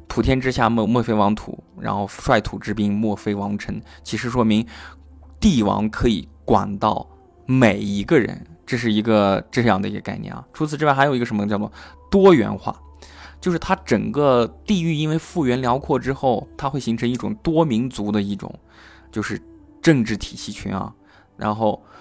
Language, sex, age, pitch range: Chinese, male, 20-39, 100-130 Hz